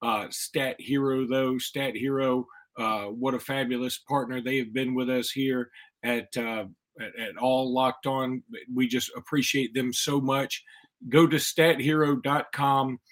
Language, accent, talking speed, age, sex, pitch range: English, American, 145 wpm, 40-59, male, 125-140 Hz